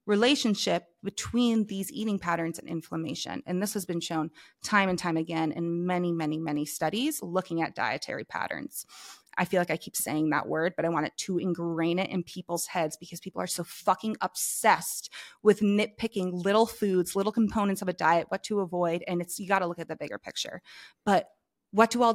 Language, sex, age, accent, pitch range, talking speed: English, female, 20-39, American, 170-210 Hz, 205 wpm